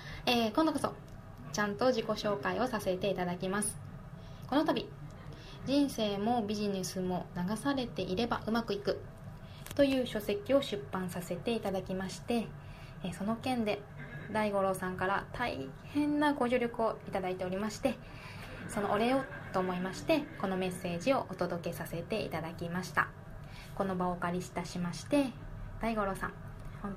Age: 20-39